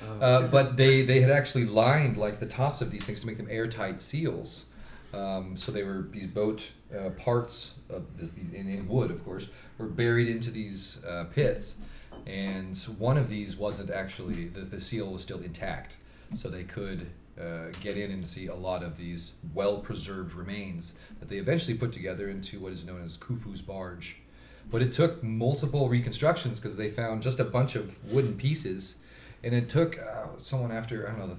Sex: male